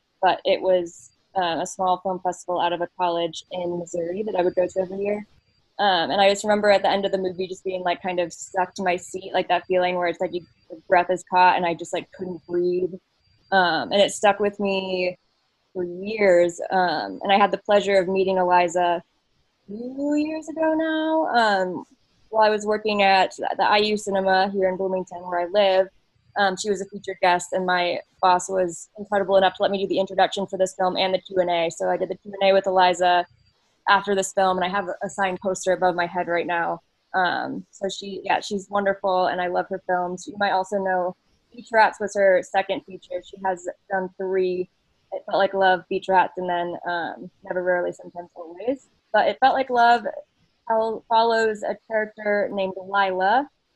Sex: female